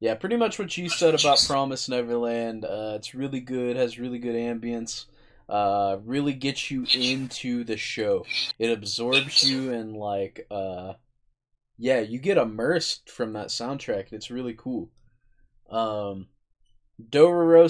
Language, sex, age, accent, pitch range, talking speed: English, male, 20-39, American, 110-135 Hz, 140 wpm